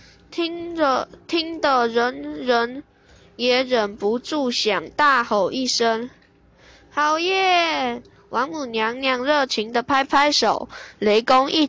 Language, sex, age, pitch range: Chinese, female, 10-29, 235-300 Hz